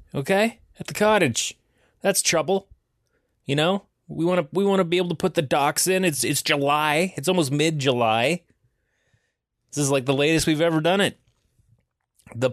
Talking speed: 175 wpm